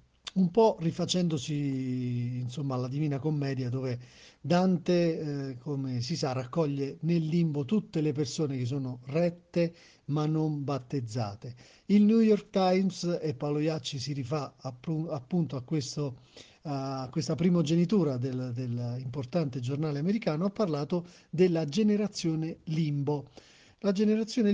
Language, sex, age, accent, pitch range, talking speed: Italian, male, 40-59, native, 140-175 Hz, 120 wpm